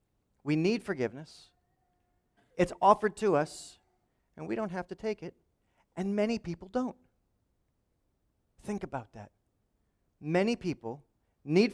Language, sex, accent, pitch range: English, male, American, 105-165 Hz